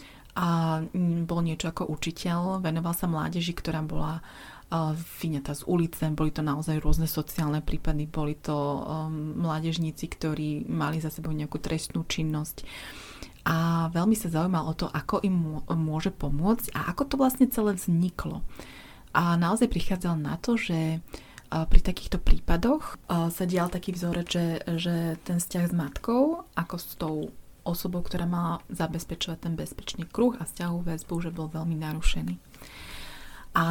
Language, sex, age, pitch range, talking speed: Slovak, female, 30-49, 160-180 Hz, 150 wpm